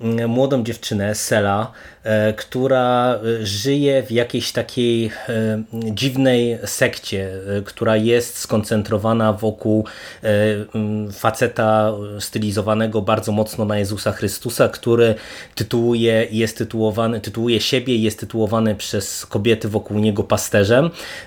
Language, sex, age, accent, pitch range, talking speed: Polish, male, 20-39, native, 105-120 Hz, 100 wpm